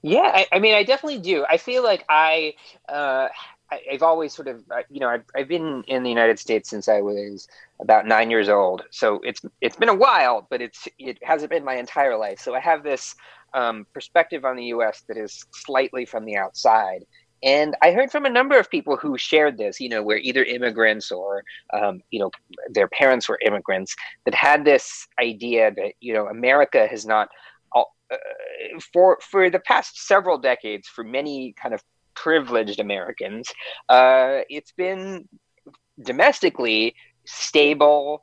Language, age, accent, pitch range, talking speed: English, 30-49, American, 120-190 Hz, 180 wpm